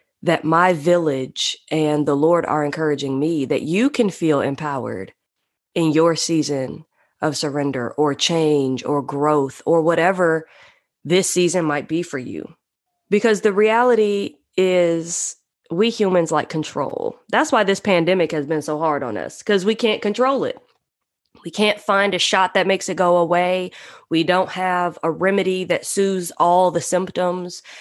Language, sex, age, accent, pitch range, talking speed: English, female, 20-39, American, 160-215 Hz, 160 wpm